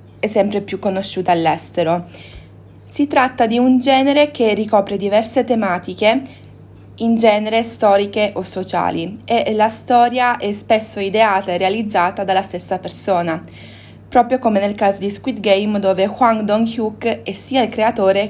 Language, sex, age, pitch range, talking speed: Italian, female, 20-39, 190-225 Hz, 140 wpm